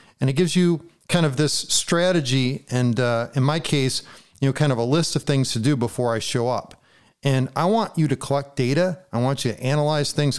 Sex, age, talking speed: male, 40-59, 230 wpm